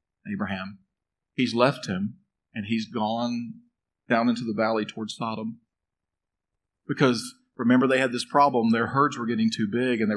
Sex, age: male, 40-59